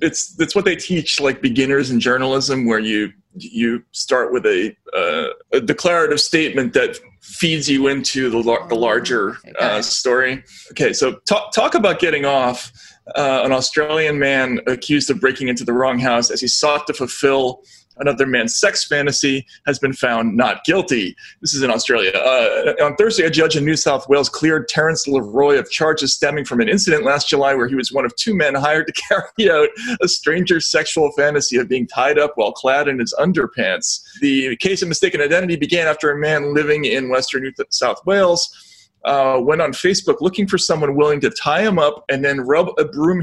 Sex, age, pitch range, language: male, 30-49, 130-170 Hz, English